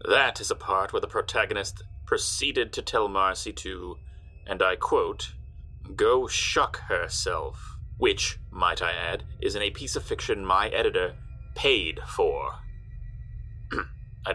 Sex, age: male, 30-49